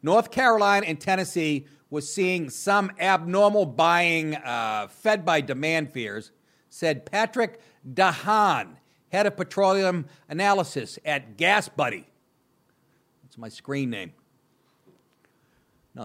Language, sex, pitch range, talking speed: English, male, 145-210 Hz, 110 wpm